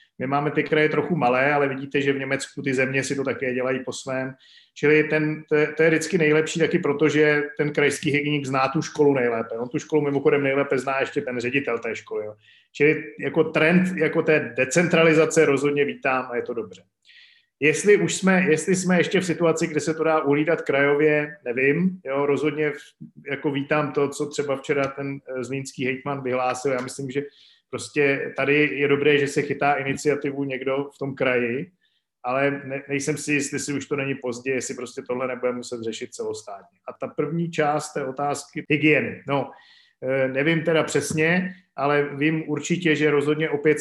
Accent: native